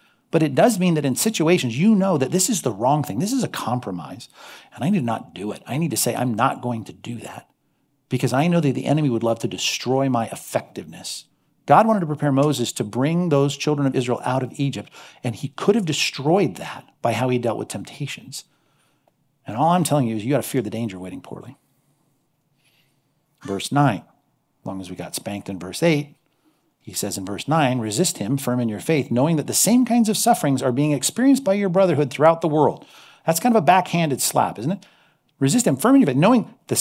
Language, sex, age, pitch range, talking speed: English, male, 50-69, 125-170 Hz, 230 wpm